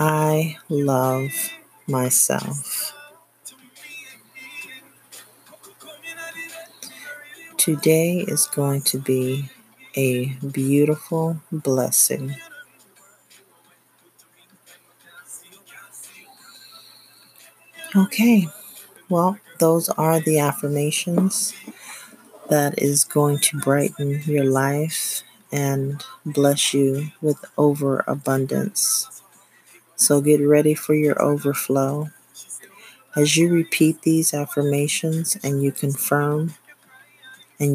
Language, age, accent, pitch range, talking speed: English, 40-59, American, 140-165 Hz, 70 wpm